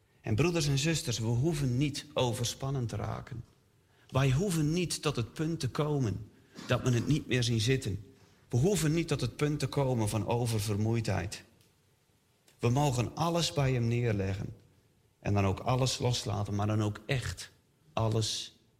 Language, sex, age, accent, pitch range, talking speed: Dutch, male, 40-59, Dutch, 105-130 Hz, 165 wpm